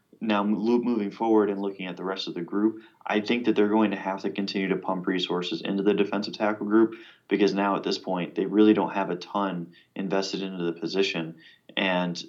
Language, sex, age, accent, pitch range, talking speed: English, male, 20-39, American, 90-100 Hz, 215 wpm